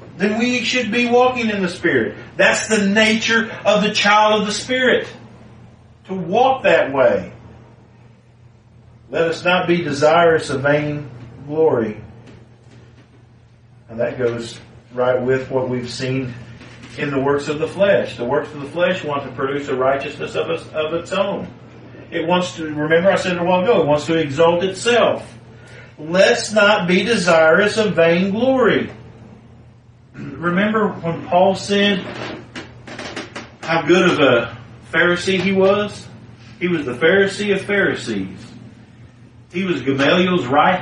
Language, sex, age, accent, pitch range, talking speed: English, male, 50-69, American, 120-195 Hz, 145 wpm